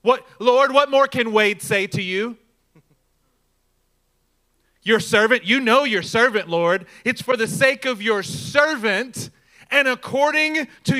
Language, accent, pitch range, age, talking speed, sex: English, American, 170-270 Hz, 30-49, 140 wpm, male